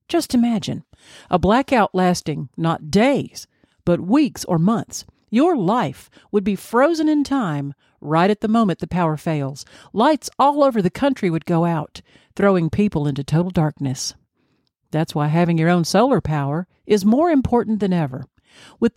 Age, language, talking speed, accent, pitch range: 50-69, English, 160 wpm, American, 160-250 Hz